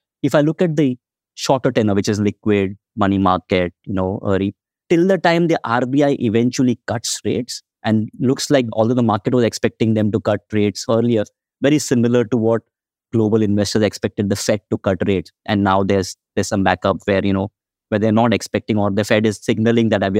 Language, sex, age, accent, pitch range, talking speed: English, male, 20-39, Indian, 100-115 Hz, 200 wpm